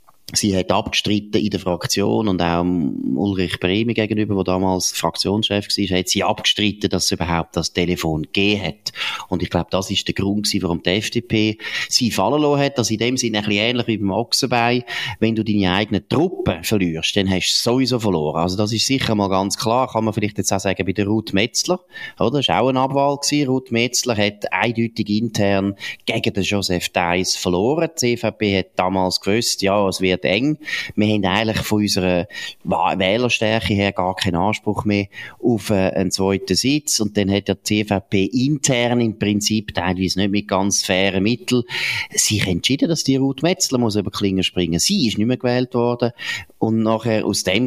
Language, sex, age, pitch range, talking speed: German, male, 30-49, 95-120 Hz, 195 wpm